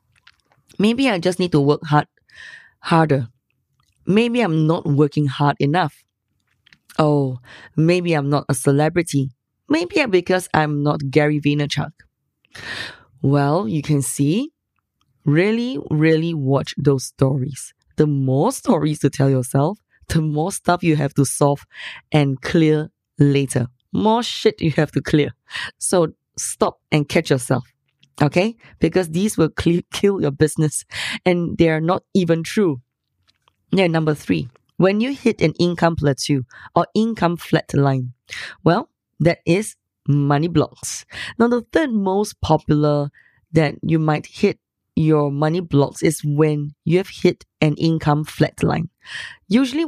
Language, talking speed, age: English, 135 wpm, 20-39